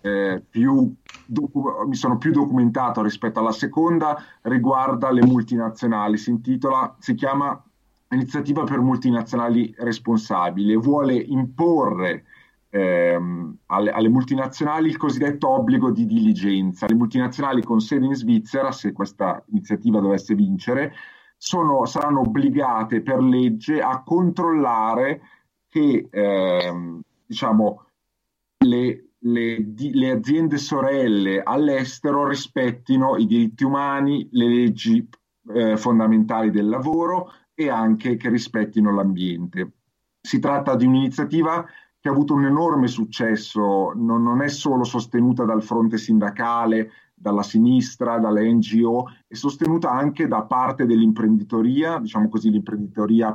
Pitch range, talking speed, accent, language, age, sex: 110-145 Hz, 115 wpm, native, Italian, 40-59, male